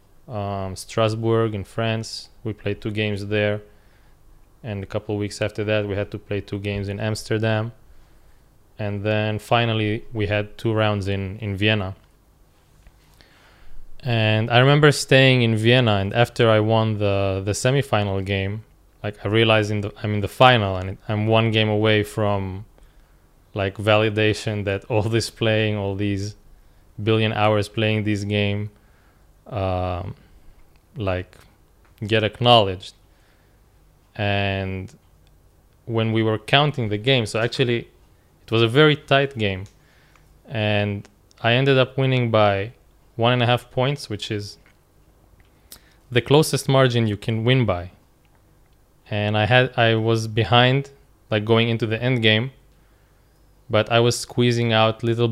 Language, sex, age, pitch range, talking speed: English, male, 20-39, 100-115 Hz, 145 wpm